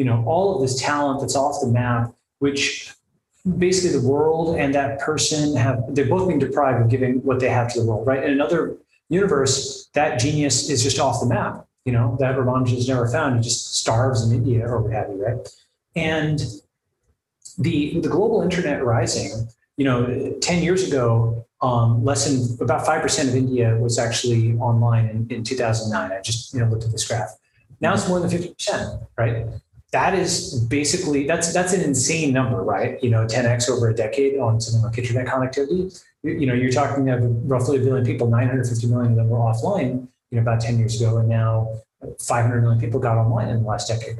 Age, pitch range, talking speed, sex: 30-49, 115-140 Hz, 200 wpm, male